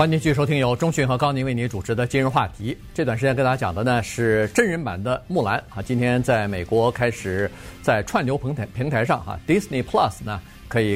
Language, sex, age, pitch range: Chinese, male, 50-69, 110-145 Hz